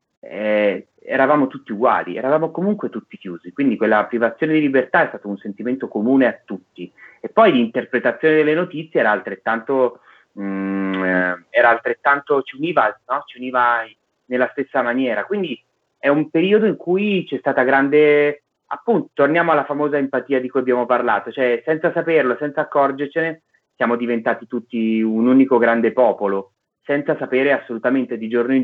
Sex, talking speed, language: male, 155 wpm, Italian